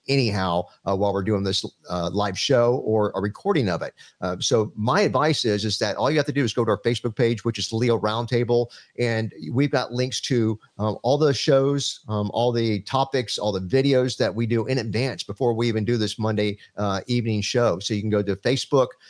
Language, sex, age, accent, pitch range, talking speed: English, male, 50-69, American, 105-130 Hz, 225 wpm